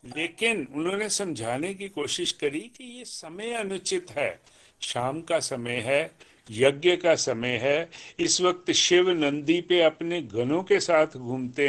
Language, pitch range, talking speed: Hindi, 135-185 Hz, 150 wpm